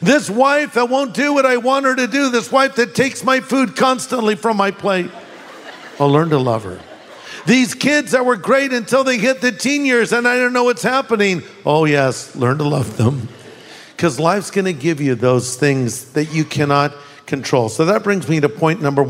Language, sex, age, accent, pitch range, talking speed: English, male, 50-69, American, 150-230 Hz, 210 wpm